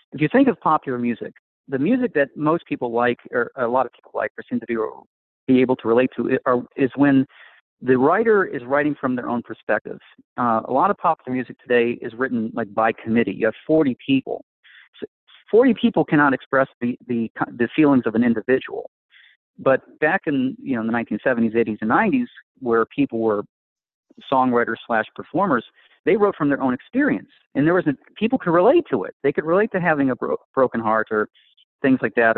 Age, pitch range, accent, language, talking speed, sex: 40-59, 120-200 Hz, American, English, 205 wpm, male